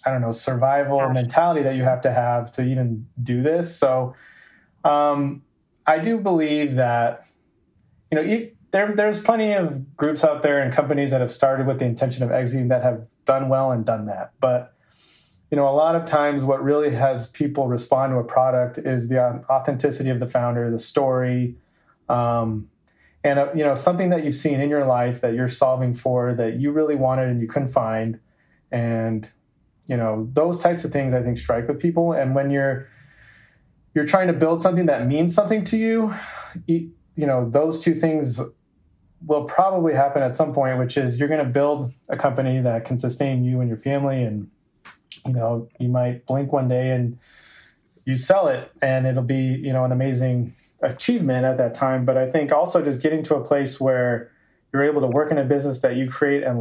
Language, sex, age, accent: English, male, 30-49, American